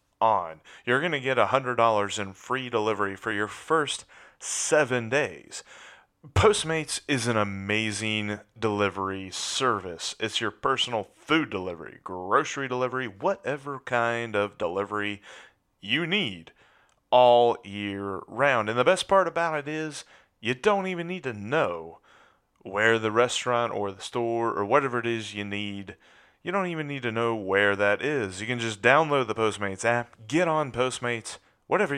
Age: 30-49